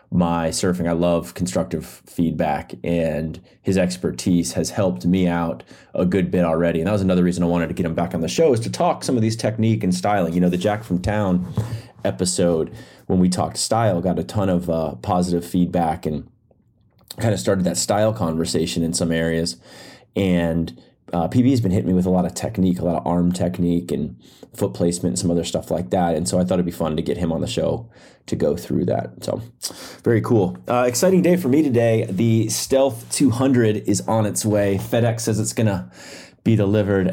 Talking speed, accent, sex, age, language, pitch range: 215 wpm, American, male, 30-49, English, 85-100 Hz